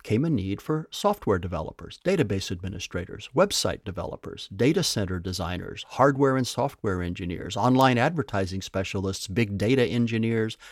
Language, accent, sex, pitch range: English, American, male, 95-125 Hz